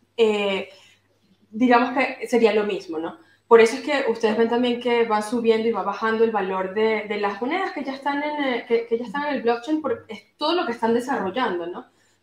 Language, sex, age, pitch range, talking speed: Spanish, female, 20-39, 205-245 Hz, 230 wpm